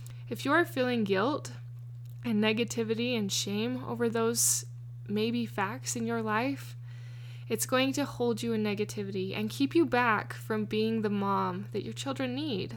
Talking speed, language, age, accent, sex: 165 wpm, English, 10-29, American, female